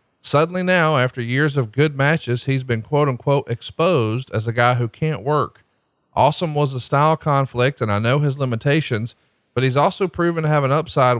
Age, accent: 40-59, American